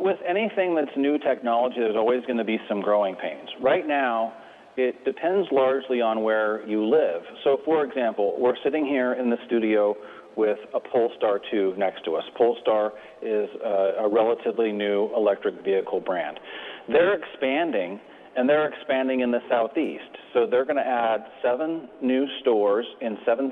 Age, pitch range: 40-59, 110-140 Hz